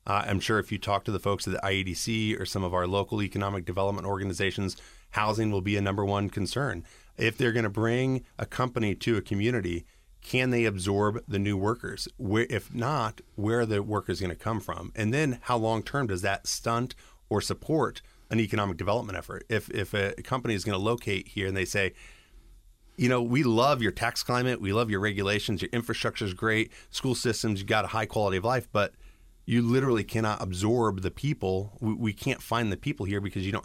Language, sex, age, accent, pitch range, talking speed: English, male, 30-49, American, 100-115 Hz, 220 wpm